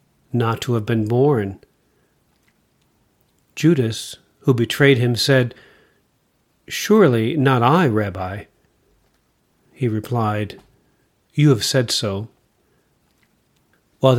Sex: male